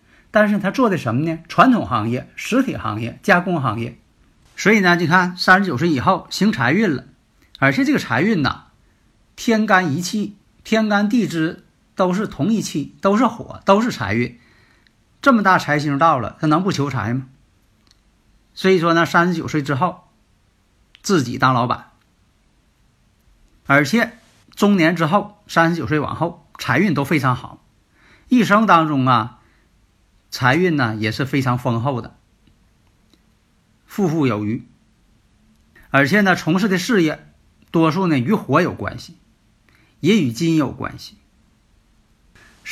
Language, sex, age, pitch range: Chinese, male, 50-69, 115-185 Hz